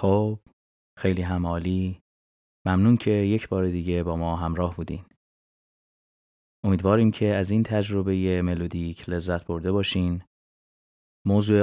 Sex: male